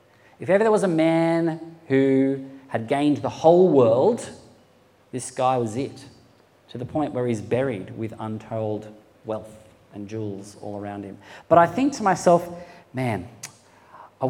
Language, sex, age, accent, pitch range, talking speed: English, male, 40-59, Australian, 115-150 Hz, 155 wpm